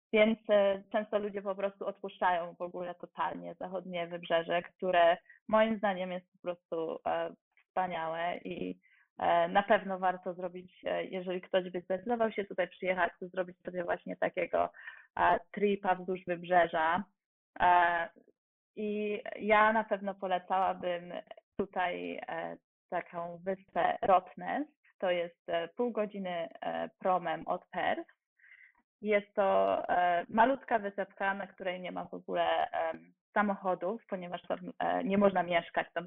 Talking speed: 120 wpm